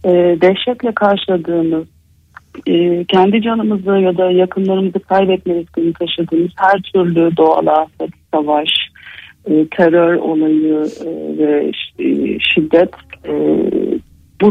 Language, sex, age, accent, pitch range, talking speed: Turkish, female, 50-69, native, 165-200 Hz, 105 wpm